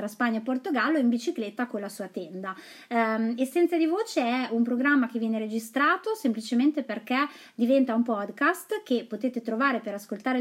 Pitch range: 220-280 Hz